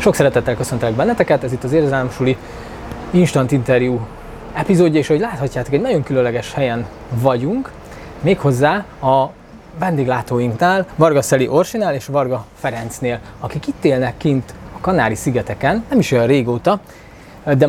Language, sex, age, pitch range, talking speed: Hungarian, male, 20-39, 125-155 Hz, 135 wpm